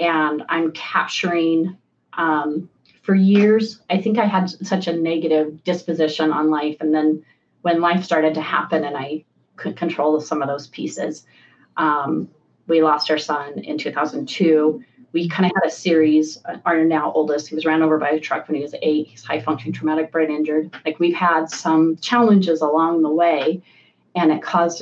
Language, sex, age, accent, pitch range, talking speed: English, female, 30-49, American, 155-175 Hz, 180 wpm